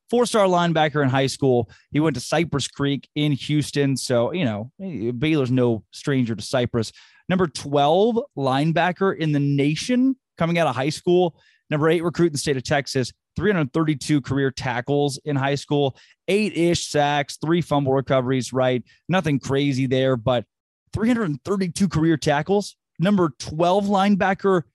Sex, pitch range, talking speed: male, 130-170 Hz, 150 wpm